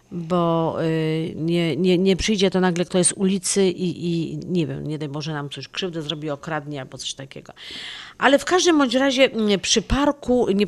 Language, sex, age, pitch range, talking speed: Polish, female, 40-59, 170-200 Hz, 185 wpm